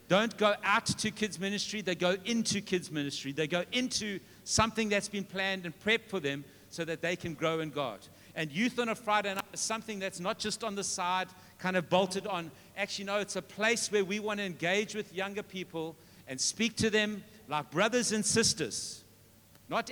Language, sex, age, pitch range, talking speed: English, male, 60-79, 150-205 Hz, 210 wpm